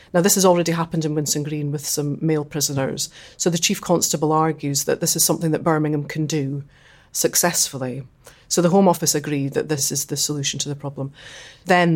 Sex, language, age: female, English, 30-49